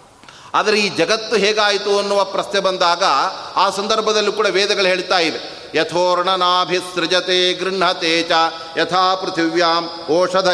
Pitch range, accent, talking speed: 175-210 Hz, native, 115 wpm